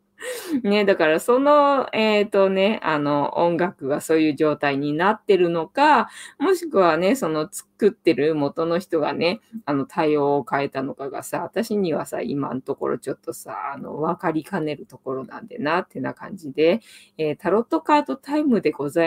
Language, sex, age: Japanese, female, 20-39